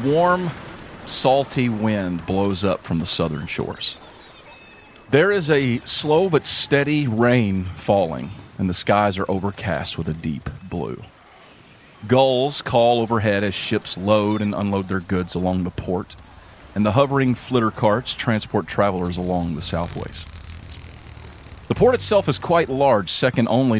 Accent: American